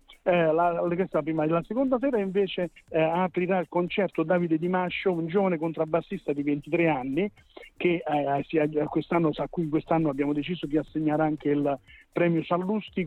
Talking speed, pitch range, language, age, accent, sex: 155 wpm, 150-180 Hz, Italian, 50-69, native, male